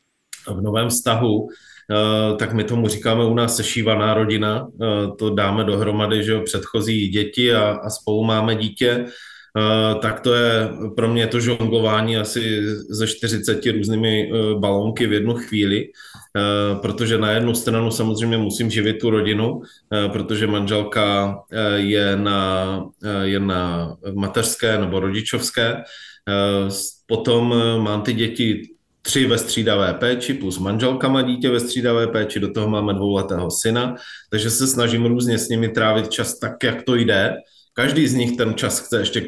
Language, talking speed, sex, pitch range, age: Slovak, 145 wpm, male, 105-120 Hz, 20-39